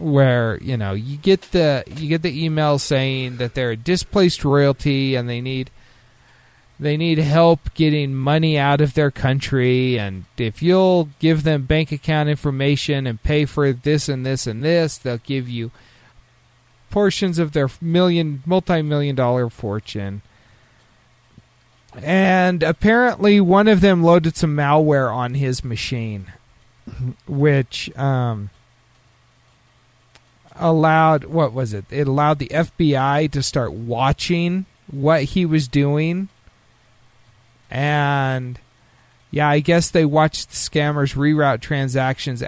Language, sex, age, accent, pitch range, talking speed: English, male, 40-59, American, 120-155 Hz, 130 wpm